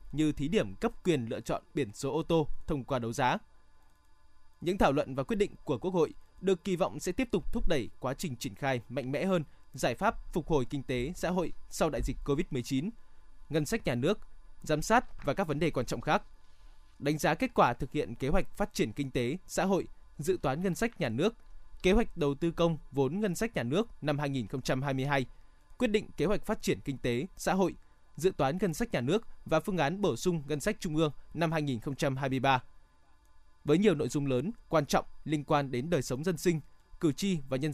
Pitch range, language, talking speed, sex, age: 135-190 Hz, Vietnamese, 225 wpm, male, 20-39